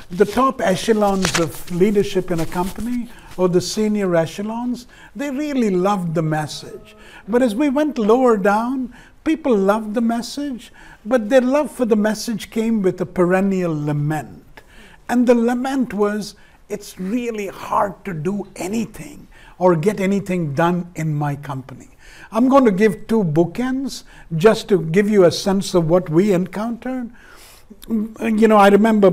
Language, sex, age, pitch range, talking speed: English, male, 60-79, 170-225 Hz, 155 wpm